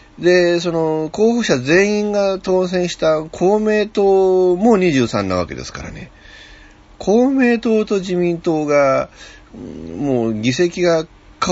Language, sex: Japanese, male